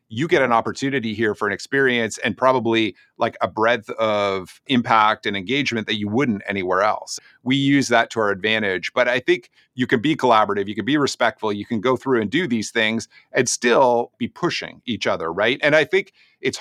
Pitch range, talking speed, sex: 110-130 Hz, 210 wpm, male